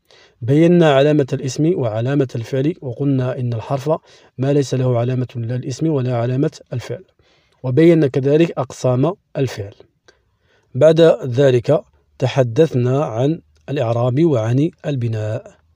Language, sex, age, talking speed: Arabic, male, 40-59, 105 wpm